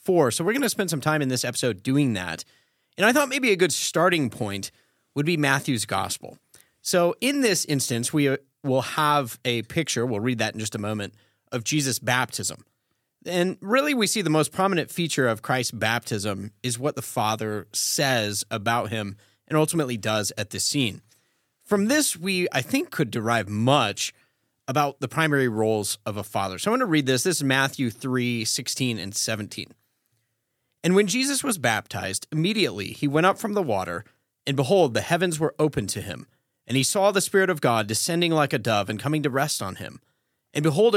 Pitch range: 110-160 Hz